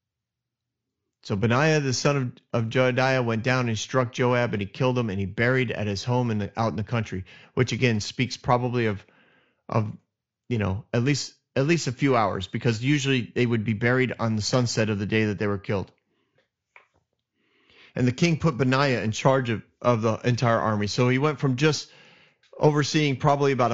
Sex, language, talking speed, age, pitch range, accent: male, English, 200 wpm, 30-49, 120-150 Hz, American